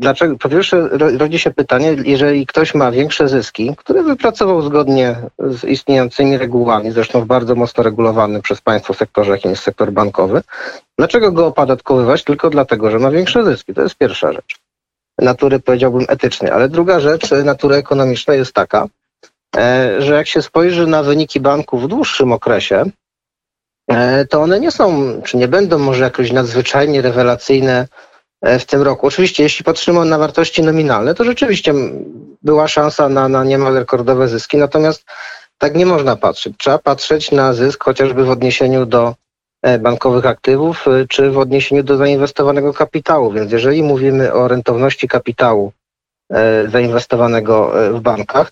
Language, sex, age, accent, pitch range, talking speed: Polish, male, 40-59, native, 125-155 Hz, 150 wpm